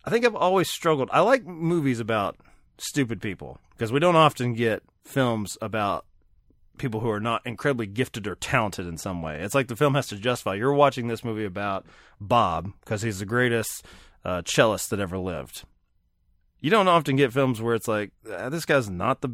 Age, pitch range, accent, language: 30-49, 100-140 Hz, American, English